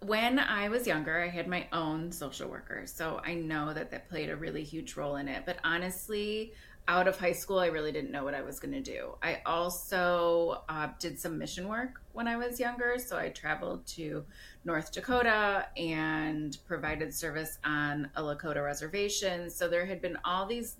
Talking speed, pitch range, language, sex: 195 wpm, 155-205 Hz, English, female